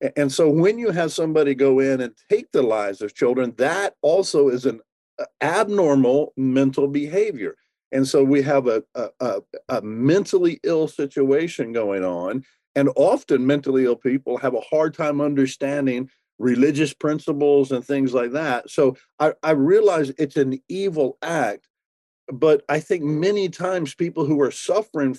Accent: American